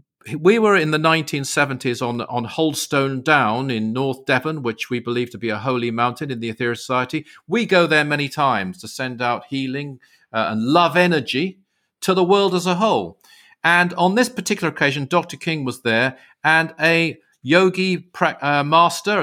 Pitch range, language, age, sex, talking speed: 120-165 Hz, English, 50-69, male, 180 wpm